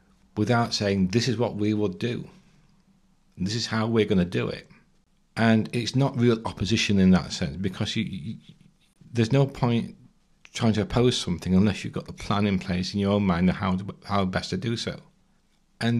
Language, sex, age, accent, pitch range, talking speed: English, male, 40-59, British, 95-120 Hz, 205 wpm